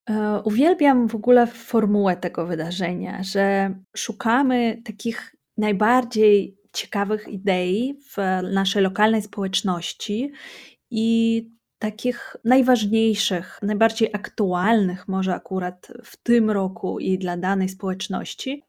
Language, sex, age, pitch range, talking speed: Polish, female, 20-39, 190-230 Hz, 95 wpm